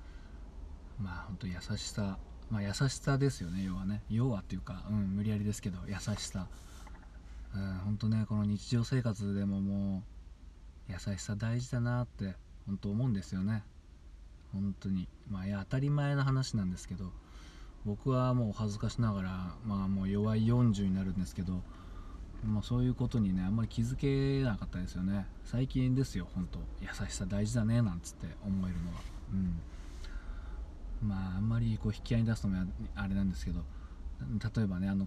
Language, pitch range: Japanese, 85-105 Hz